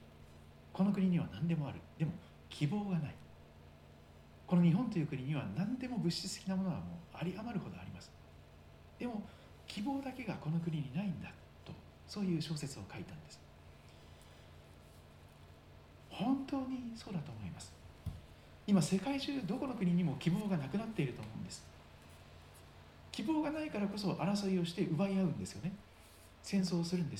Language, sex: Japanese, male